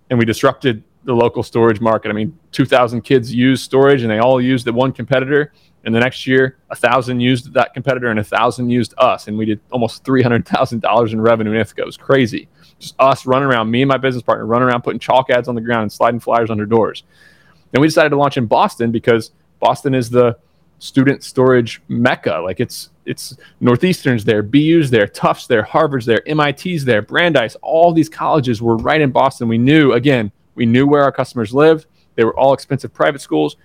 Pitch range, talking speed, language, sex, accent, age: 115-135 Hz, 210 wpm, English, male, American, 20-39